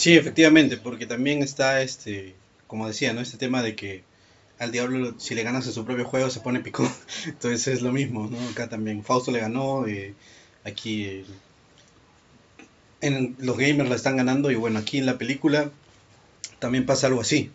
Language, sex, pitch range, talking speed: Spanish, male, 110-130 Hz, 185 wpm